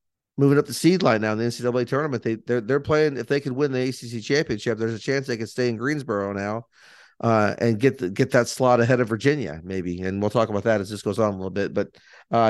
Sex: male